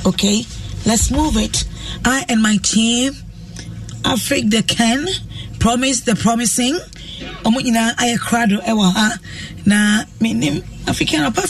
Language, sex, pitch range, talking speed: English, female, 190-240 Hz, 80 wpm